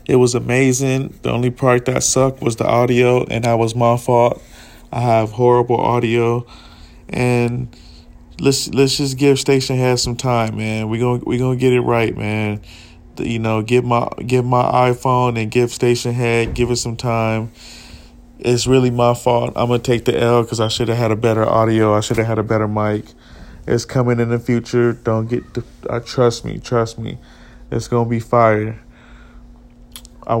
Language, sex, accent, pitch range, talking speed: English, male, American, 110-120 Hz, 190 wpm